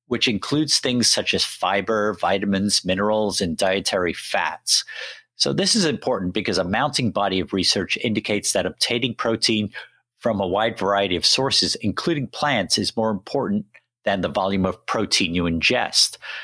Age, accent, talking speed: 50-69, American, 155 wpm